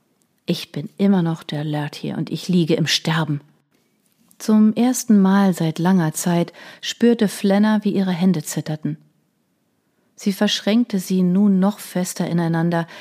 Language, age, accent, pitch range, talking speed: German, 40-59, German, 160-195 Hz, 145 wpm